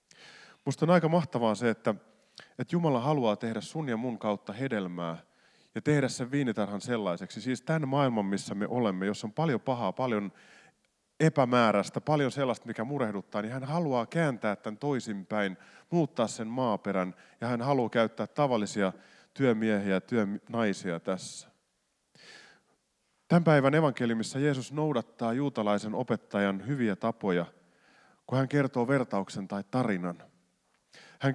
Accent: native